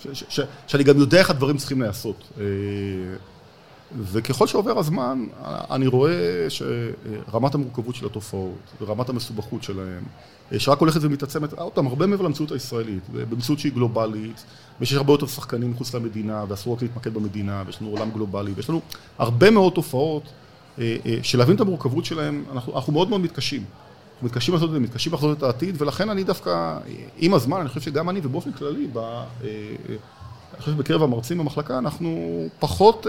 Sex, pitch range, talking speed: male, 110-145 Hz, 160 wpm